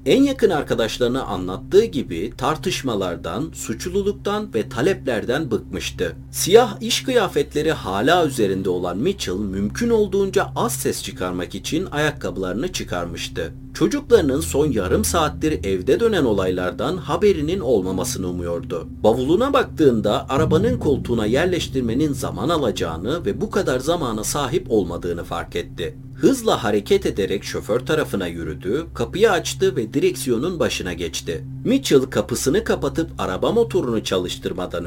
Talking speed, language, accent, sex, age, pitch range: 115 wpm, Turkish, native, male, 40-59, 95-155 Hz